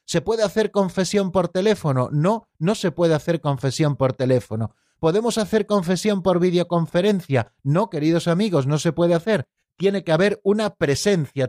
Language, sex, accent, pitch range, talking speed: Spanish, male, Spanish, 130-175 Hz, 160 wpm